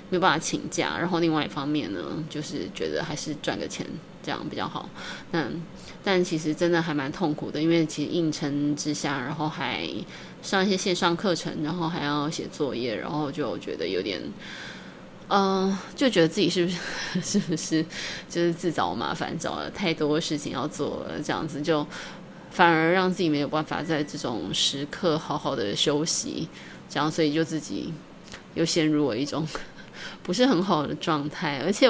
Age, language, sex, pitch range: 20-39, Chinese, female, 155-185 Hz